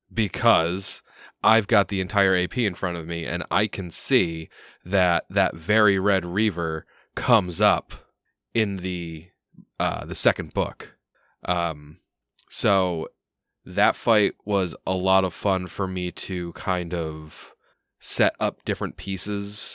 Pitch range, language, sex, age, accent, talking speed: 85-100 Hz, English, male, 20-39, American, 135 wpm